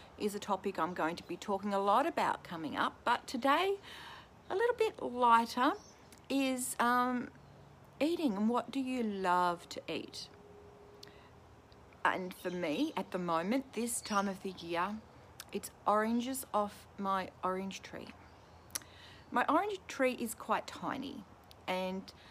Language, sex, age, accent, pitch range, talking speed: English, female, 40-59, Australian, 180-250 Hz, 145 wpm